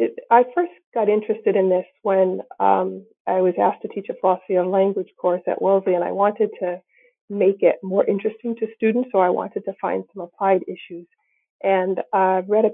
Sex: female